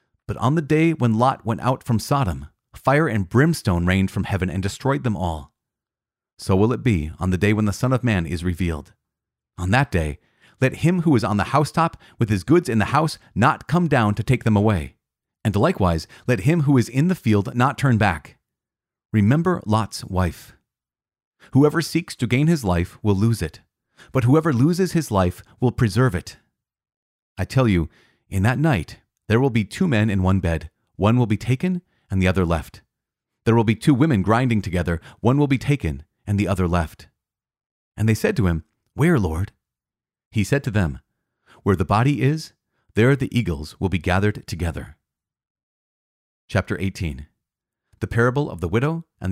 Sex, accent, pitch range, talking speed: male, American, 95-130 Hz, 190 wpm